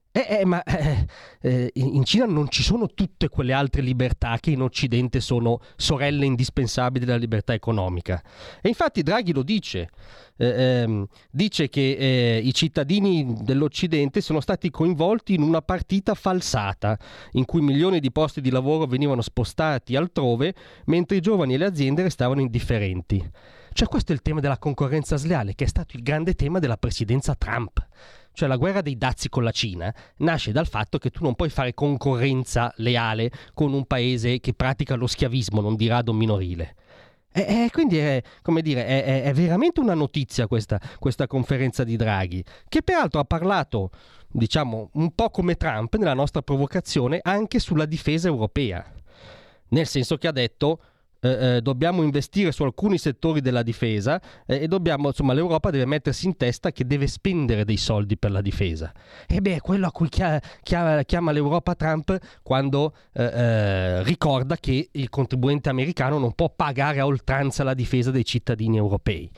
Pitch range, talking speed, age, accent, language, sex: 120-160 Hz, 165 wpm, 30-49, native, Italian, male